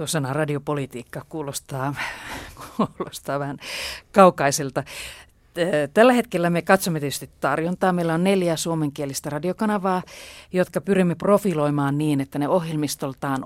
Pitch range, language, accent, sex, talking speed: 145-180 Hz, Finnish, native, female, 105 wpm